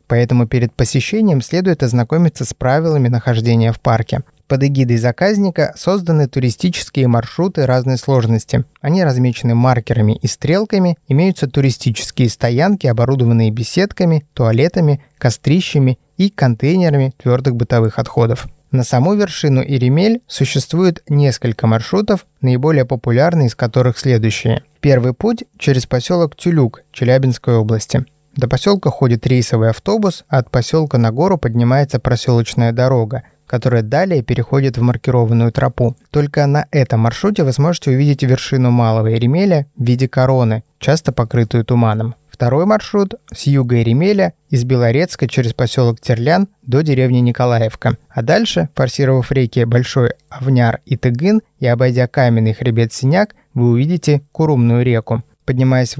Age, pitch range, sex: 20-39, 120-150 Hz, male